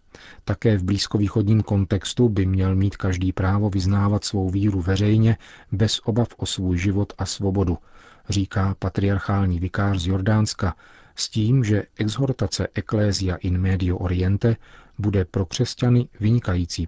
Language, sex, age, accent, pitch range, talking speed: Czech, male, 40-59, native, 95-110 Hz, 130 wpm